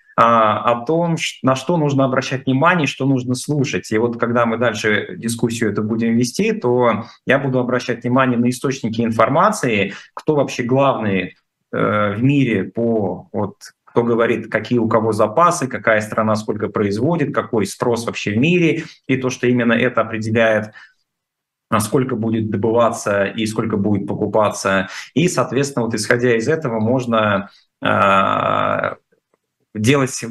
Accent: native